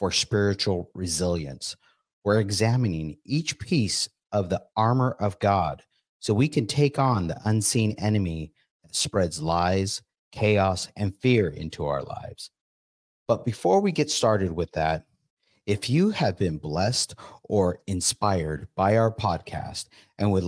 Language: English